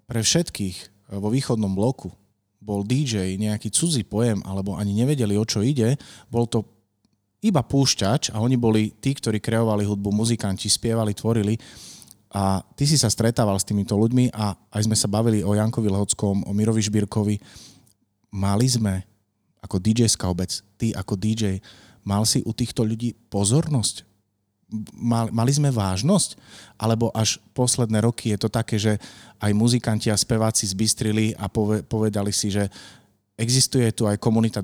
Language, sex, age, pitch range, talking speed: Slovak, male, 30-49, 105-115 Hz, 150 wpm